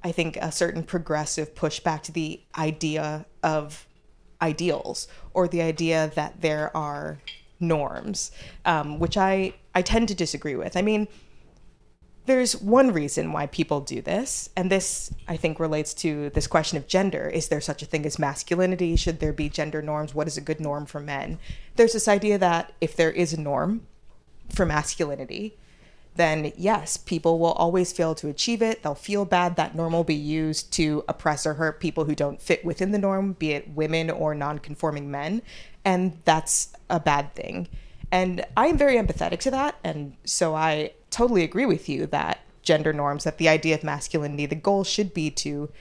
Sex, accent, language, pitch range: female, American, English, 150-185 Hz